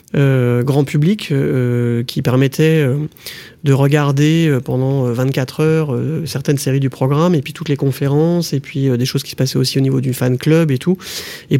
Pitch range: 135-160 Hz